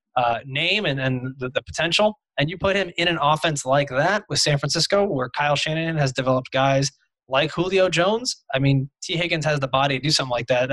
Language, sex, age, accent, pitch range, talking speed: English, male, 20-39, American, 135-170 Hz, 225 wpm